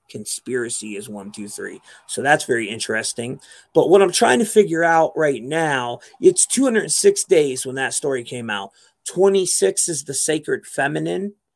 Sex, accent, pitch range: male, American, 130-175 Hz